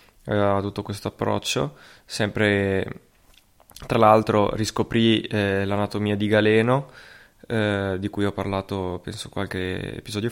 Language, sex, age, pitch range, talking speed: Italian, male, 20-39, 100-115 Hz, 115 wpm